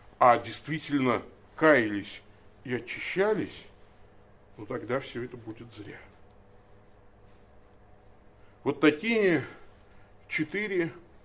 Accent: native